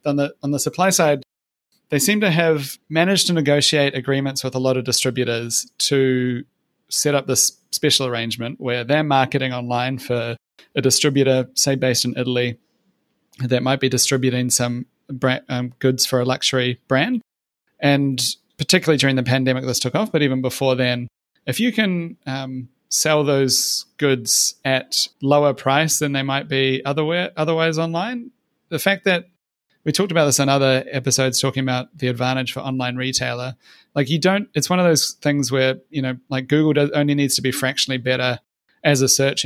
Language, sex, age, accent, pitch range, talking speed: English, male, 30-49, Australian, 125-145 Hz, 175 wpm